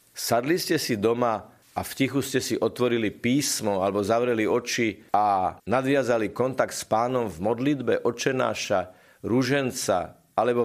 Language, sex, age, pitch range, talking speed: Slovak, male, 50-69, 105-135 Hz, 135 wpm